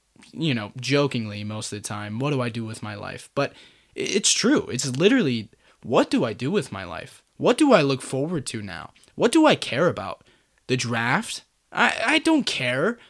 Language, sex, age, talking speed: English, male, 20-39, 200 wpm